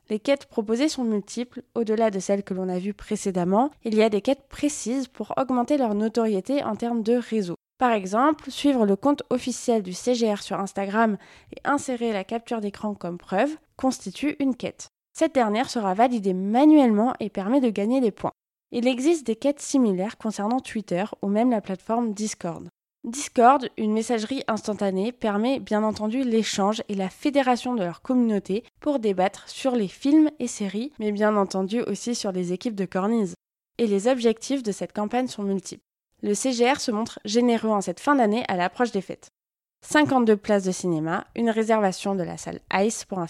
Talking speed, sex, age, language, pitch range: 185 wpm, female, 20-39, French, 200-250 Hz